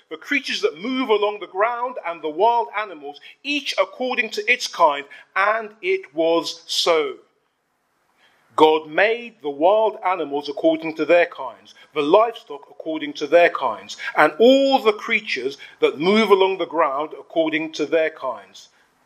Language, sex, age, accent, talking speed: English, male, 40-59, British, 150 wpm